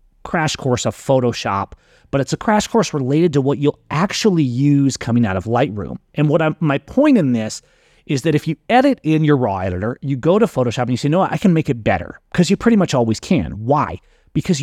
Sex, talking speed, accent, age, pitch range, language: male, 230 wpm, American, 30-49, 115-155 Hz, English